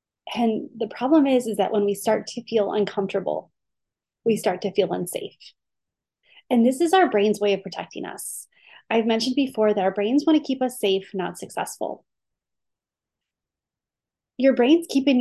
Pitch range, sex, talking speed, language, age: 200-250 Hz, female, 165 wpm, English, 30-49